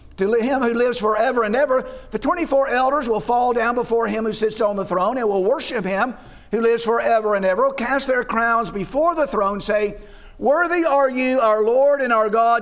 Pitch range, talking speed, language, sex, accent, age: 215-265 Hz, 215 wpm, English, male, American, 50-69